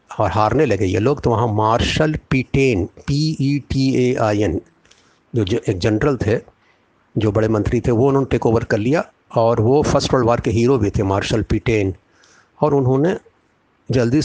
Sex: male